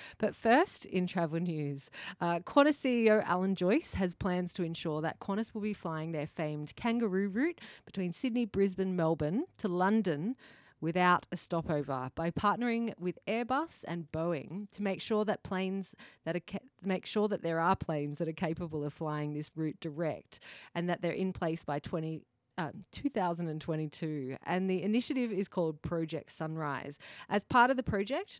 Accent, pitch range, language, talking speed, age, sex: Australian, 150-195 Hz, English, 165 wpm, 30-49, female